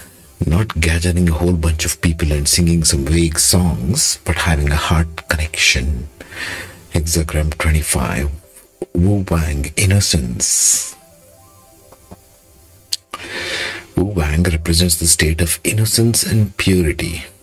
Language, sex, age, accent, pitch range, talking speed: English, male, 50-69, Indian, 80-90 Hz, 105 wpm